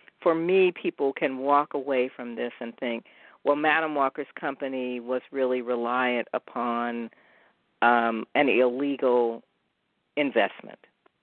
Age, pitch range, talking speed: 50-69, 120-145 Hz, 120 wpm